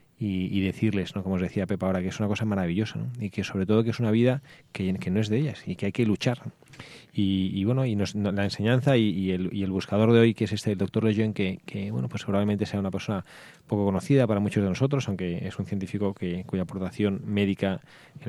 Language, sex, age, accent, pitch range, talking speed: Spanish, male, 20-39, Spanish, 95-120 Hz, 260 wpm